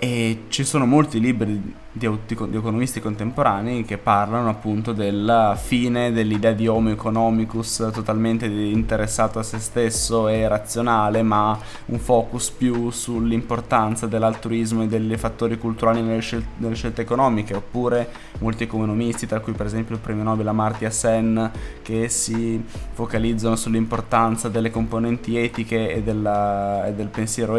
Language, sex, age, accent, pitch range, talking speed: Italian, male, 20-39, native, 110-120 Hz, 140 wpm